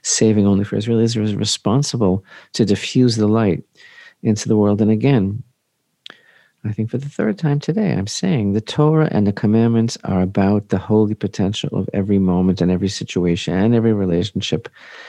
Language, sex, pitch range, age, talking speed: English, male, 95-120 Hz, 40-59, 175 wpm